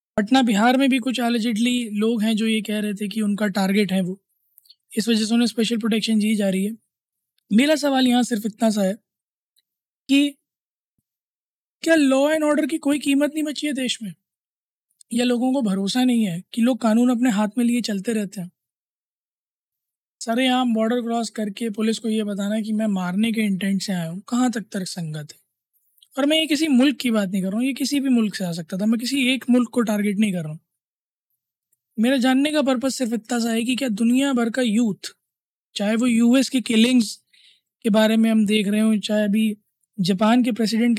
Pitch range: 210-255 Hz